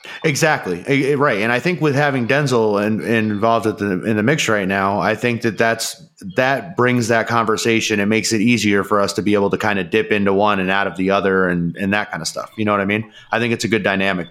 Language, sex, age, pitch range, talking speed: English, male, 30-49, 100-115 Hz, 250 wpm